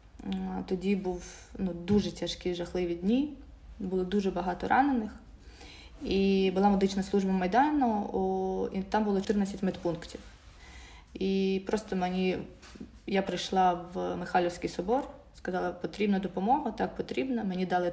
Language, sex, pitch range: Ukrainian, female, 175-200 Hz